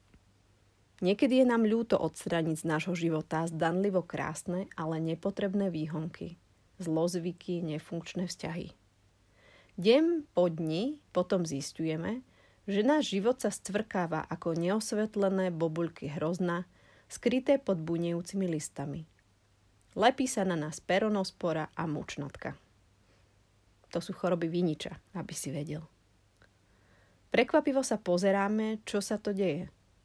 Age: 30-49